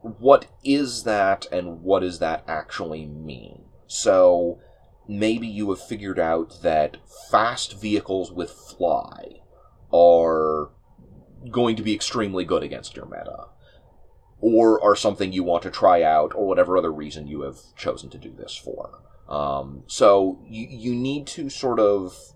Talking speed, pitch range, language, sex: 150 wpm, 80-110 Hz, English, male